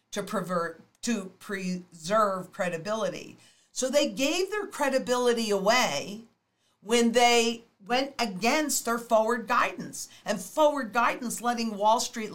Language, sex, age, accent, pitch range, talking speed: English, female, 50-69, American, 195-240 Hz, 110 wpm